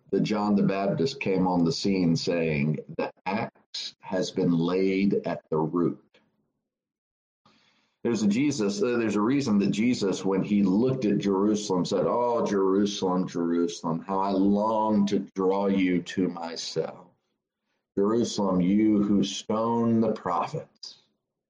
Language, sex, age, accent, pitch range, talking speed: English, male, 50-69, American, 90-105 Hz, 135 wpm